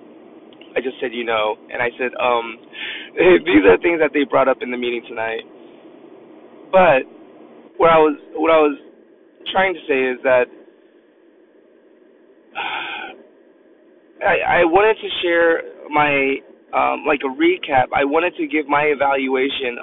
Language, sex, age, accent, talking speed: English, male, 20-39, American, 145 wpm